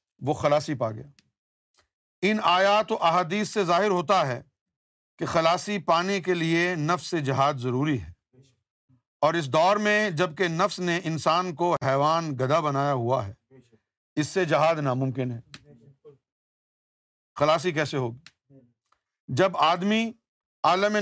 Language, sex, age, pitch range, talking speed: Urdu, male, 50-69, 135-195 Hz, 135 wpm